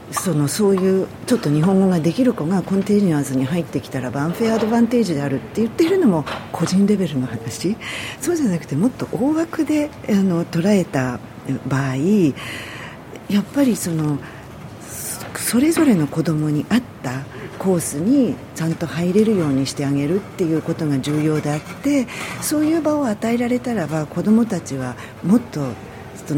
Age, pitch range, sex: 50-69, 135-200 Hz, female